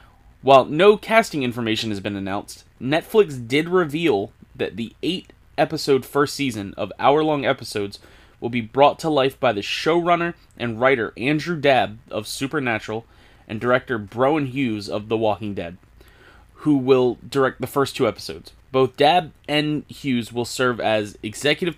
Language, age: English, 20-39